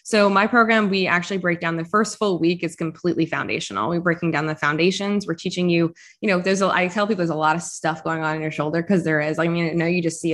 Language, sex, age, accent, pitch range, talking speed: English, female, 20-39, American, 165-185 Hz, 285 wpm